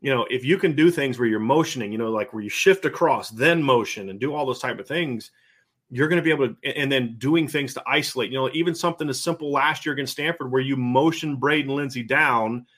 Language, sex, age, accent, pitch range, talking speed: English, male, 30-49, American, 125-145 Hz, 255 wpm